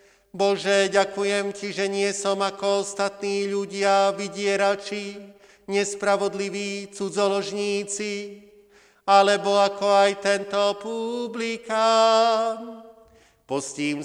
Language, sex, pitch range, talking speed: Slovak, male, 200-230 Hz, 75 wpm